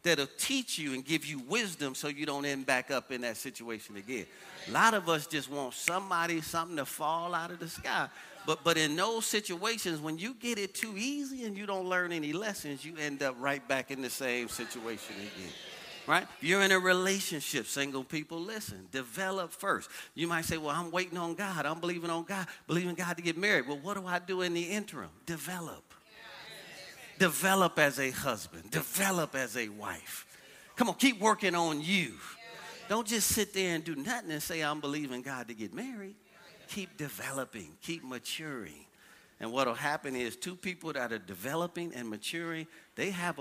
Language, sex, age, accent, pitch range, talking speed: English, male, 40-59, American, 140-195 Hz, 195 wpm